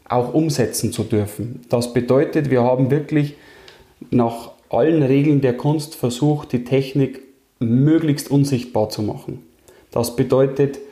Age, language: 20-39, German